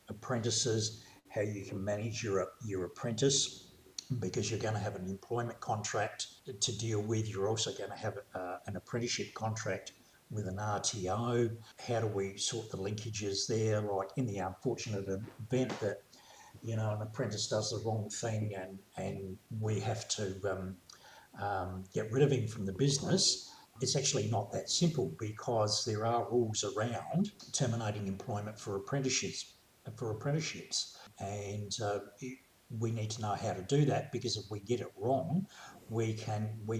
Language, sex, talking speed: English, male, 165 wpm